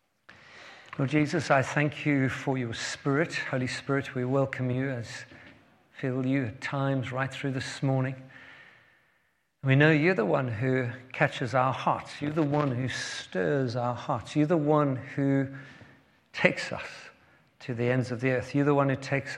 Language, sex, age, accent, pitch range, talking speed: English, male, 50-69, British, 125-145 Hz, 170 wpm